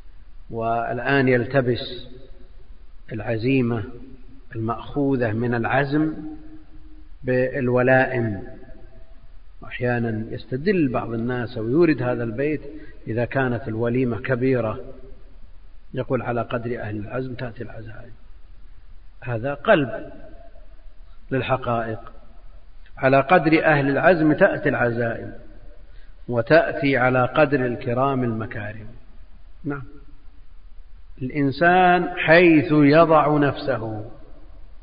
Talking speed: 75 wpm